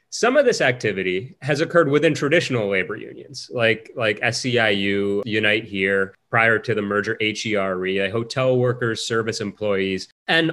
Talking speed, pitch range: 145 wpm, 105-135 Hz